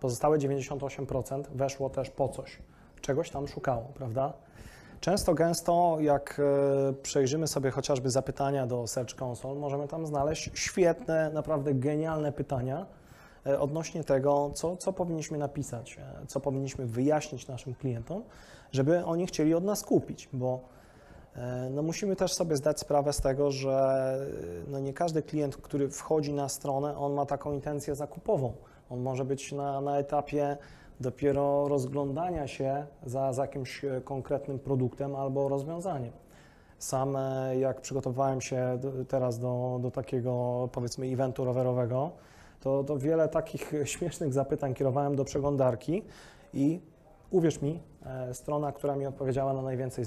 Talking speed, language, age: 135 wpm, Polish, 20-39